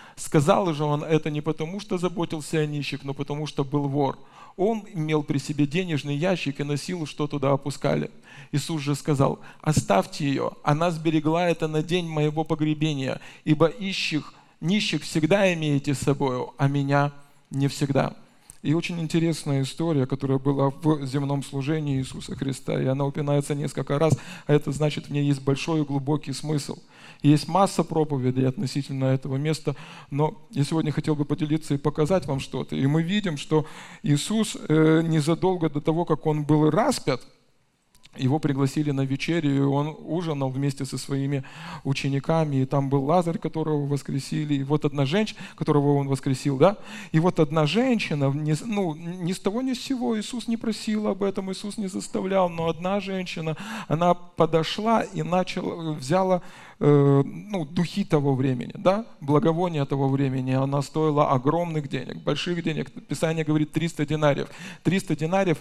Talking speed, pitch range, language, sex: 160 wpm, 140-170 Hz, Russian, male